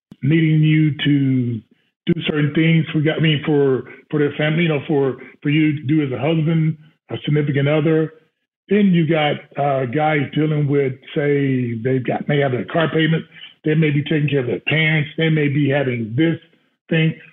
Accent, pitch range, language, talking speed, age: American, 140-165 Hz, English, 195 wpm, 40-59